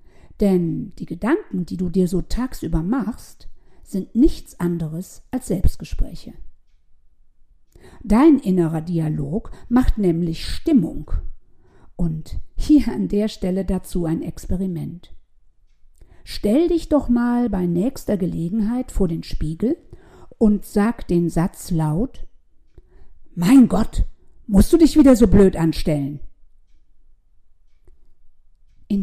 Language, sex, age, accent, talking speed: German, female, 50-69, German, 110 wpm